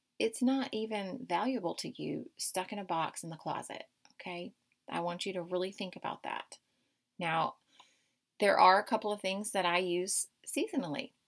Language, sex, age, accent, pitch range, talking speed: English, female, 30-49, American, 180-210 Hz, 175 wpm